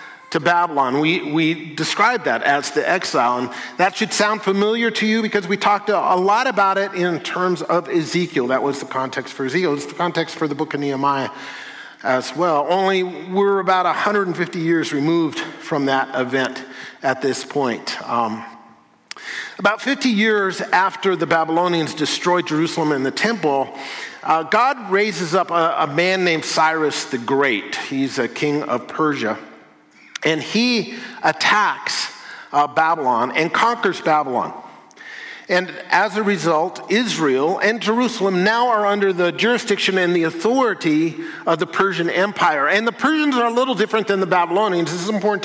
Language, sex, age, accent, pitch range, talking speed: English, male, 50-69, American, 160-215 Hz, 165 wpm